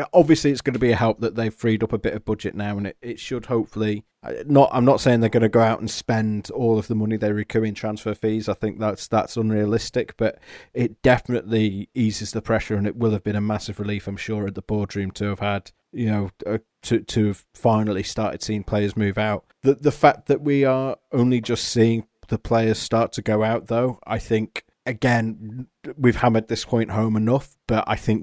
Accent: British